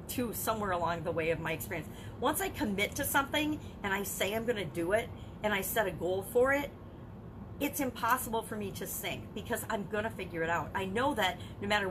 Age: 50-69